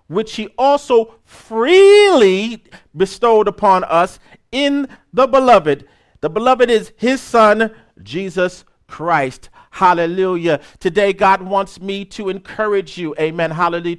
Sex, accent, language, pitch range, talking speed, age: male, American, English, 175-215 Hz, 115 wpm, 50-69